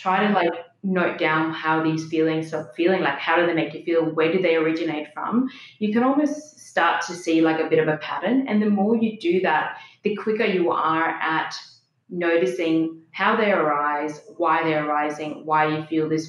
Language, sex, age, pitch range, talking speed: English, female, 20-39, 155-180 Hz, 205 wpm